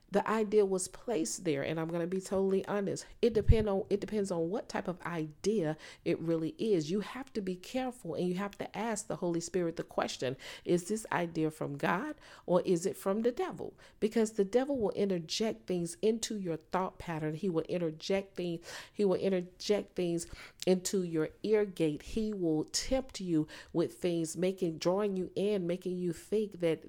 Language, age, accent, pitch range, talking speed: English, 40-59, American, 170-210 Hz, 195 wpm